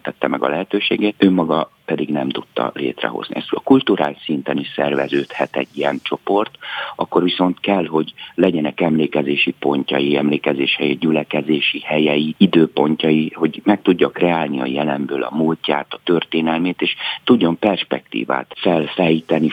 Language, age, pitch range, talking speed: Hungarian, 60-79, 70-85 Hz, 135 wpm